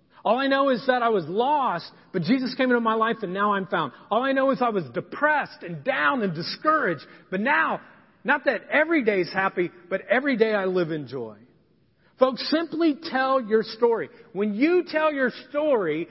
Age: 40-59